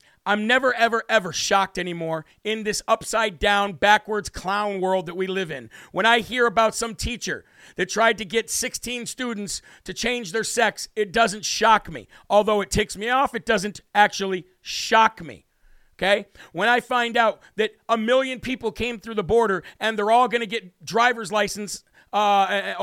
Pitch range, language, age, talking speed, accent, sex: 200-235 Hz, English, 50-69, 180 wpm, American, male